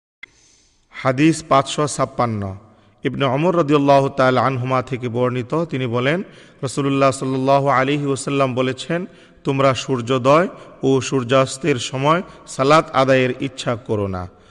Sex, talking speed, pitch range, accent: male, 100 wpm, 125-145 Hz, native